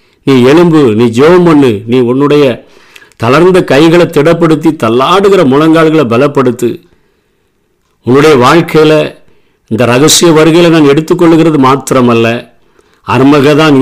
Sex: male